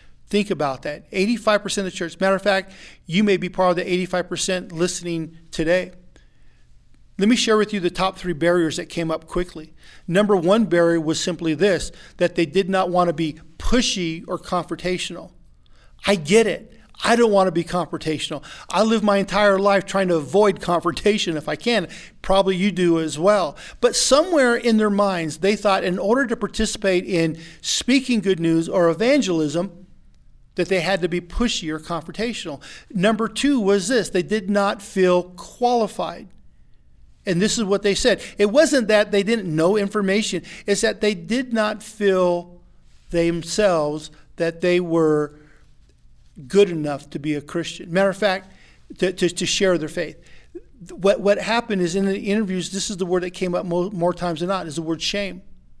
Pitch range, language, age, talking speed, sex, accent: 170-205 Hz, English, 50-69, 180 wpm, male, American